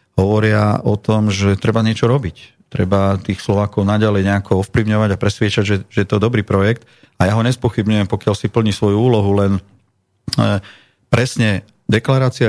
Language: Slovak